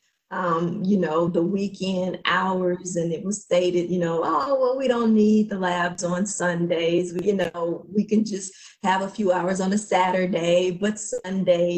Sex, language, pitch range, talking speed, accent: female, English, 175-205 Hz, 180 wpm, American